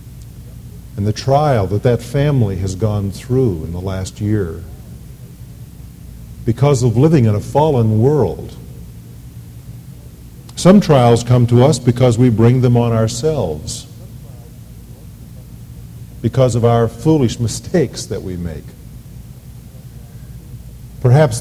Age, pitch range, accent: 50-69, 105-135 Hz, American